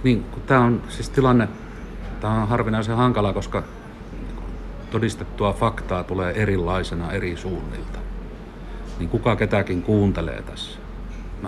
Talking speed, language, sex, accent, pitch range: 110 wpm, Finnish, male, native, 90-105 Hz